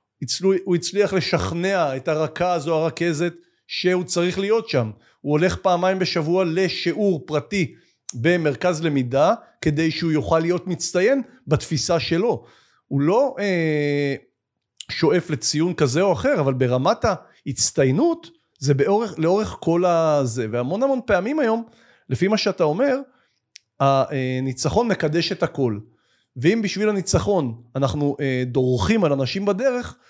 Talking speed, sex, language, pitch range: 125 wpm, male, Hebrew, 140-190 Hz